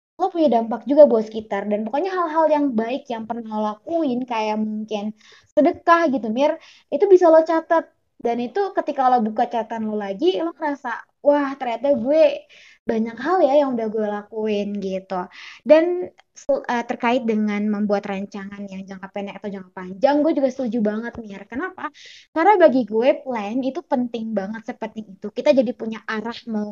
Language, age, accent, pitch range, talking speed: Indonesian, 20-39, native, 215-290 Hz, 175 wpm